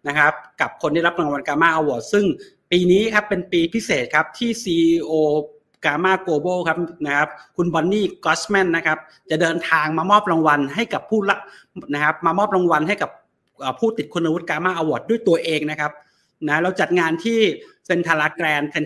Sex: male